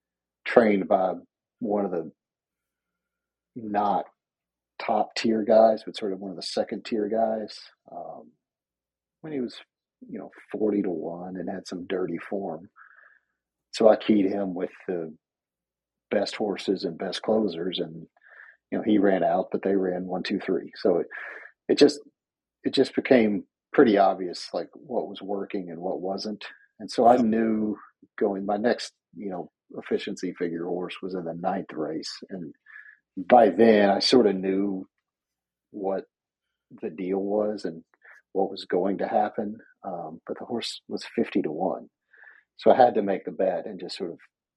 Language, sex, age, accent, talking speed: English, male, 50-69, American, 165 wpm